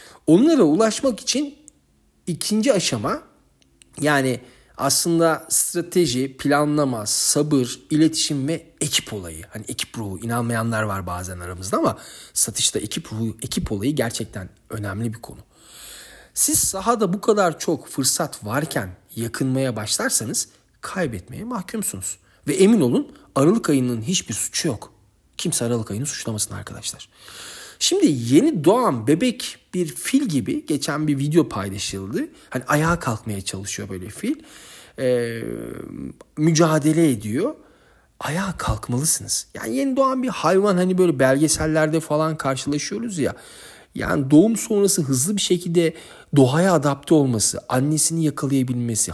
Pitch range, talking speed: 115-175 Hz, 120 wpm